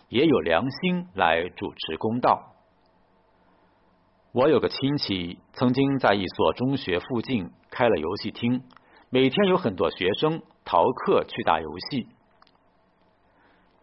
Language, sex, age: Chinese, male, 50-69